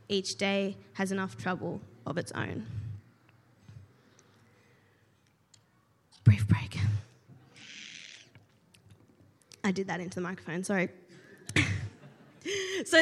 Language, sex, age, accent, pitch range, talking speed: English, female, 20-39, Australian, 180-230 Hz, 85 wpm